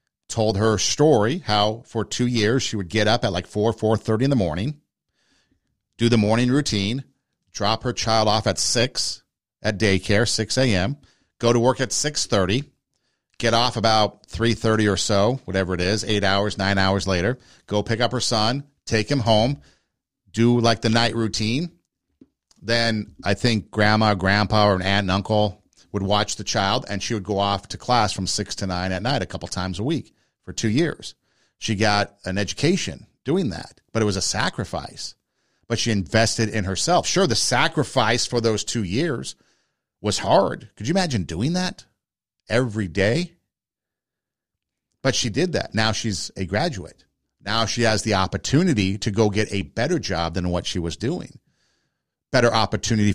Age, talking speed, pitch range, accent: 50-69, 175 wpm, 100-125 Hz, American